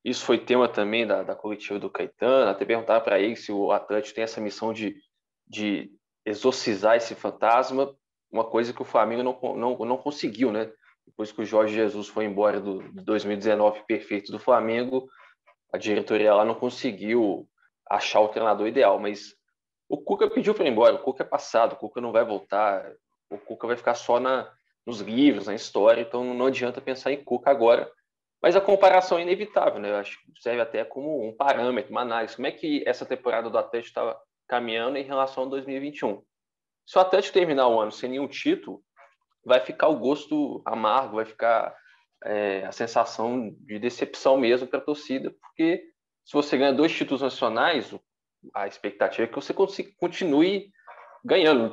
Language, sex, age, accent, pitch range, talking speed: Portuguese, male, 20-39, Brazilian, 110-145 Hz, 185 wpm